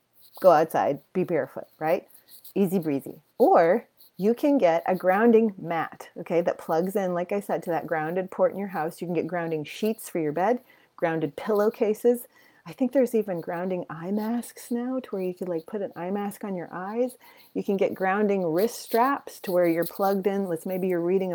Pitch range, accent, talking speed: 170-205 Hz, American, 205 wpm